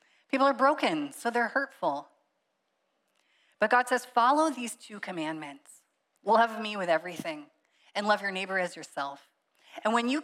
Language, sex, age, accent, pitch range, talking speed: English, female, 20-39, American, 180-230 Hz, 150 wpm